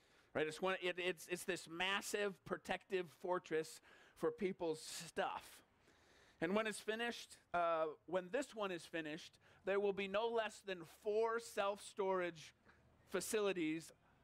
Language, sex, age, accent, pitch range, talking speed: English, male, 40-59, American, 165-205 Hz, 135 wpm